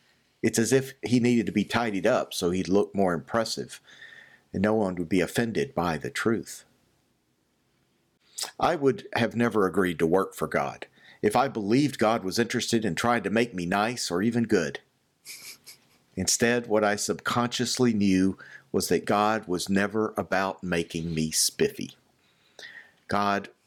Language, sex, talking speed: English, male, 155 wpm